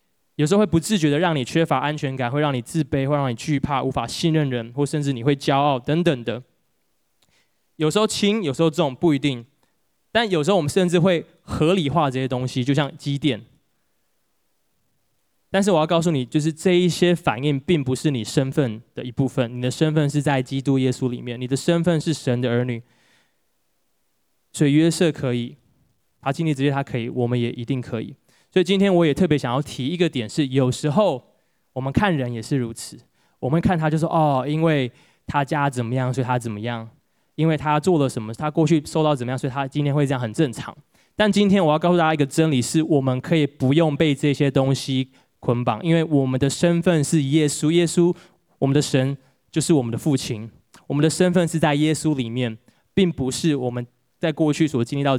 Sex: male